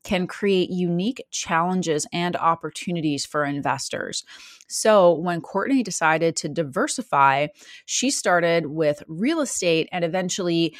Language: English